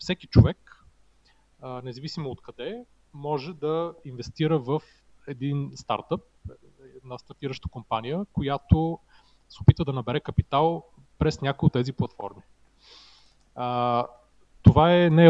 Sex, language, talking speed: male, Bulgarian, 110 wpm